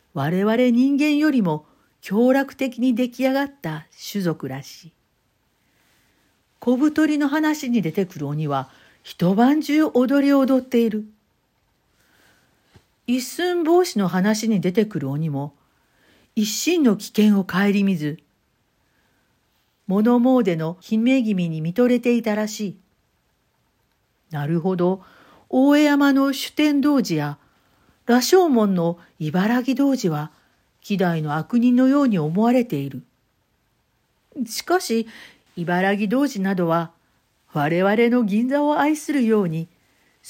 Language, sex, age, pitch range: Japanese, female, 50-69, 165-260 Hz